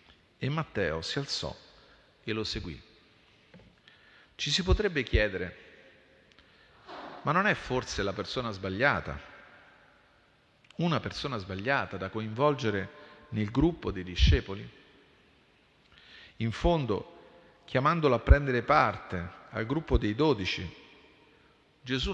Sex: male